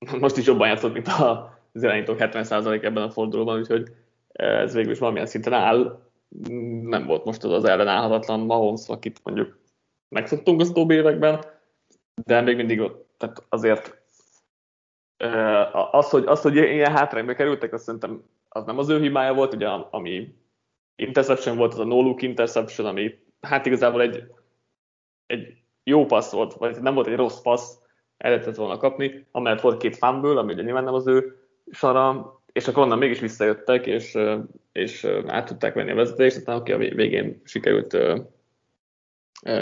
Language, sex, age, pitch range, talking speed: Hungarian, male, 20-39, 115-140 Hz, 160 wpm